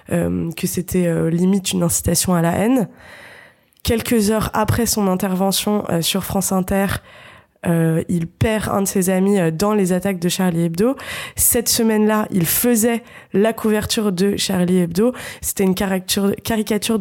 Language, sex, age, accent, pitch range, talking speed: French, female, 20-39, French, 175-200 Hz, 160 wpm